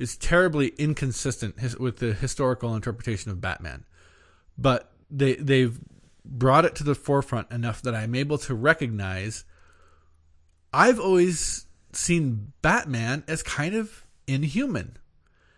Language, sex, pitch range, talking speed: English, male, 110-150 Hz, 125 wpm